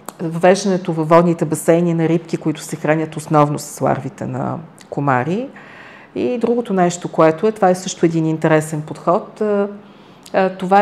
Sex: female